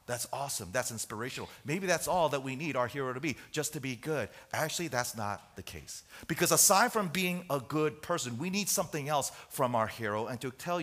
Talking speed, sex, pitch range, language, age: 220 wpm, male, 135-195 Hz, English, 30-49